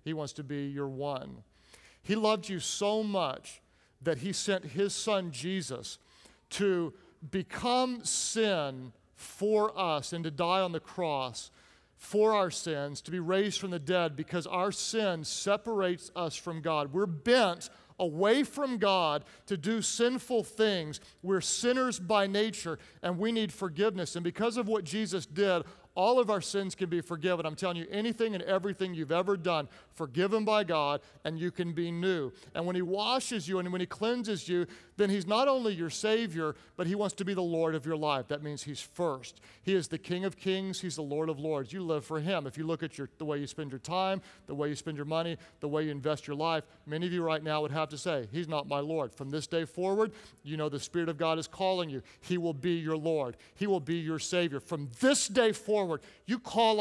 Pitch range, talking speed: 160-205 Hz, 210 wpm